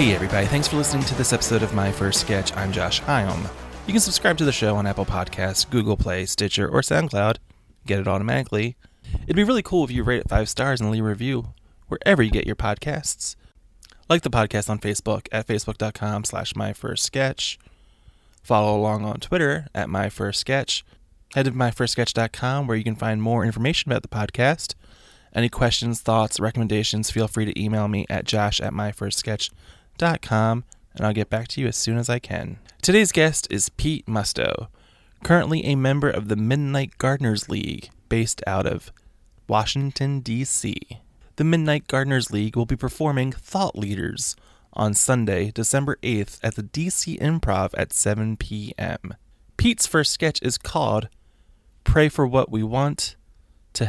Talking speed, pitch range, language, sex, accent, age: 170 wpm, 105-135 Hz, English, male, American, 20-39